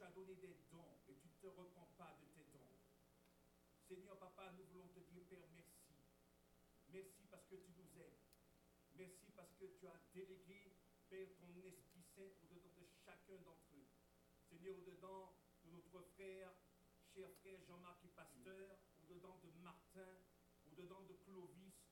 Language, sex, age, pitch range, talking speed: French, male, 50-69, 175-195 Hz, 160 wpm